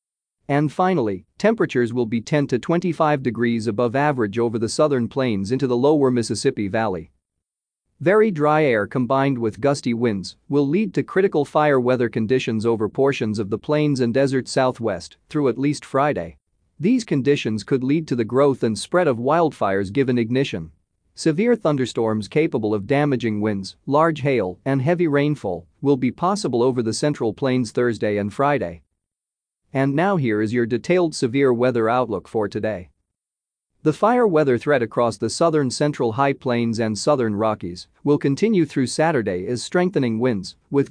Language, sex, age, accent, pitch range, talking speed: English, male, 40-59, American, 110-145 Hz, 165 wpm